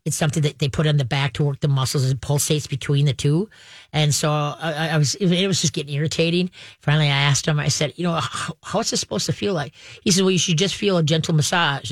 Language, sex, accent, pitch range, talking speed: English, female, American, 145-185 Hz, 270 wpm